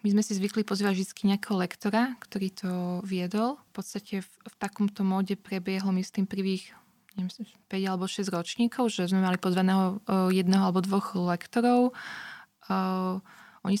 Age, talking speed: 20-39, 160 wpm